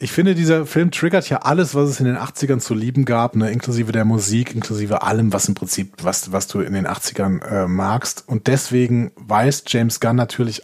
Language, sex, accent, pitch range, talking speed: German, male, German, 110-140 Hz, 215 wpm